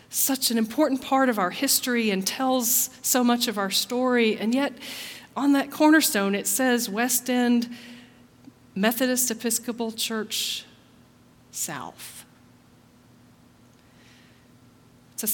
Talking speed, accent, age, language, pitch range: 110 wpm, American, 40-59, English, 190-255 Hz